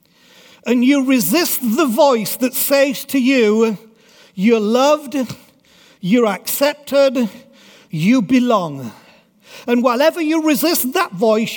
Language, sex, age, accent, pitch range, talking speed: English, male, 50-69, British, 205-265 Hz, 110 wpm